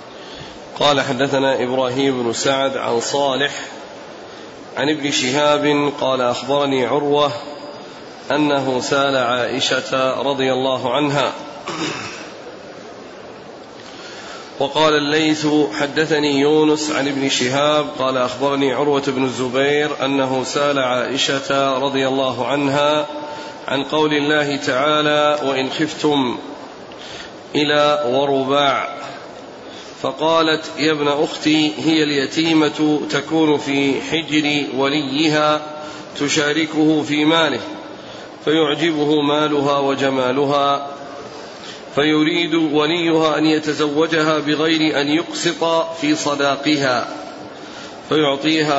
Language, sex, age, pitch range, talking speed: Arabic, male, 40-59, 140-155 Hz, 85 wpm